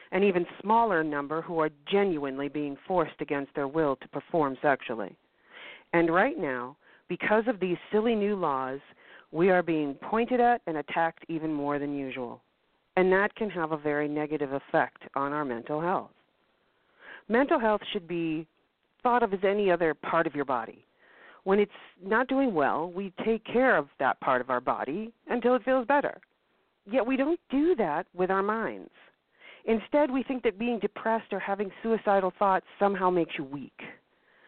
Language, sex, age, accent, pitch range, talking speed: English, female, 40-59, American, 150-215 Hz, 175 wpm